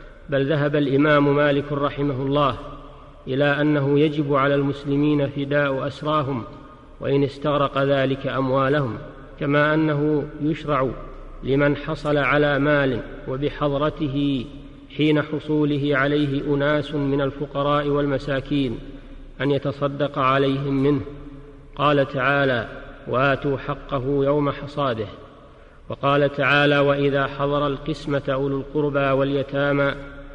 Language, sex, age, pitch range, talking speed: Arabic, male, 50-69, 135-145 Hz, 100 wpm